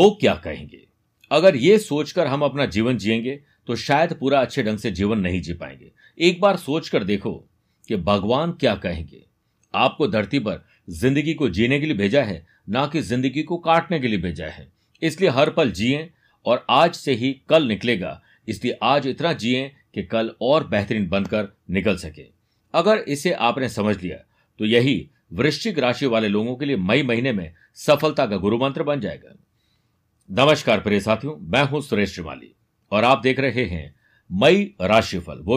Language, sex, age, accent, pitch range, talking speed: Hindi, male, 50-69, native, 110-150 Hz, 180 wpm